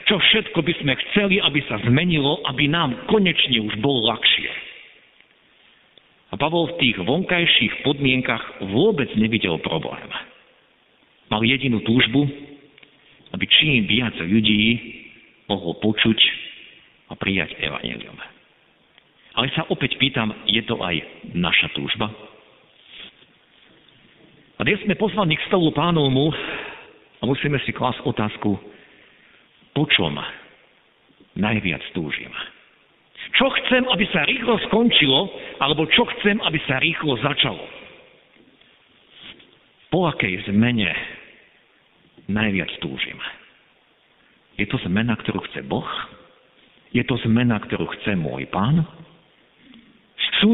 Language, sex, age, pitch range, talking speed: Slovak, male, 50-69, 110-170 Hz, 105 wpm